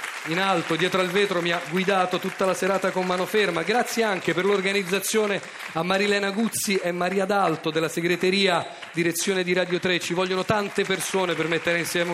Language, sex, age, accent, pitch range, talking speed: Italian, male, 40-59, native, 170-200 Hz, 185 wpm